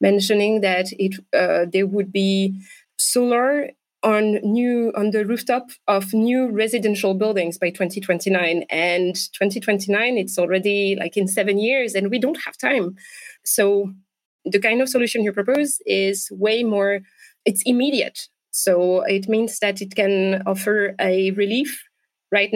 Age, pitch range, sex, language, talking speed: 20-39, 195-225 Hz, female, English, 145 wpm